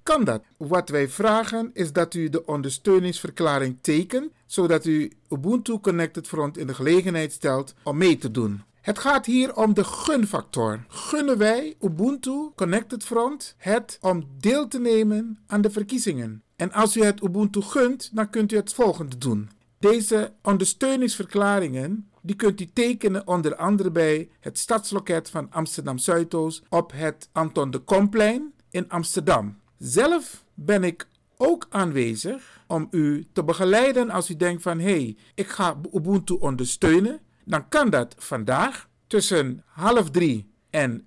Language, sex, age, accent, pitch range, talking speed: Dutch, male, 50-69, Dutch, 155-215 Hz, 150 wpm